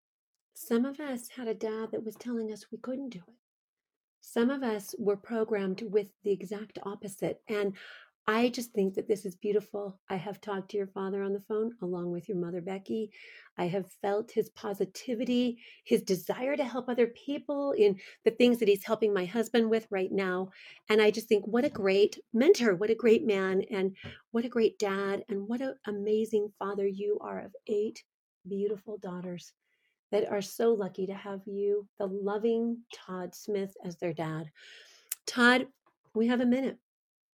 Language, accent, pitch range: English, American, 195-230 Hz